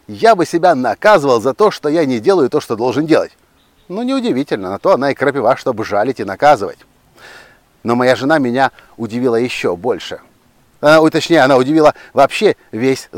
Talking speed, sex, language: 170 wpm, male, Russian